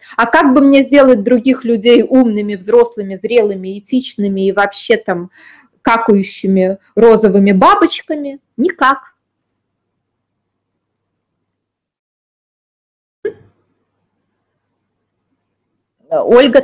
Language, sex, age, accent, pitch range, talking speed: Russian, female, 20-39, native, 200-290 Hz, 70 wpm